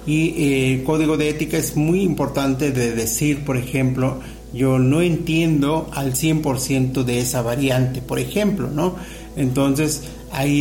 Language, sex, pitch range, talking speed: Spanish, male, 130-155 Hz, 145 wpm